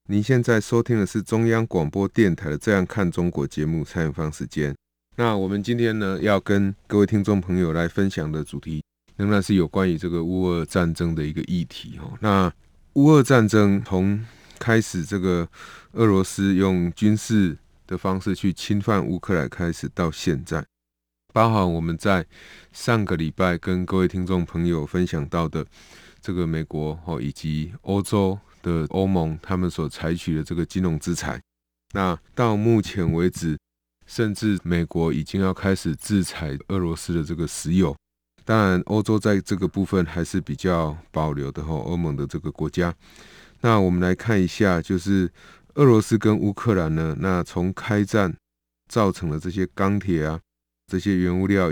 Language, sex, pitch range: Chinese, male, 80-100 Hz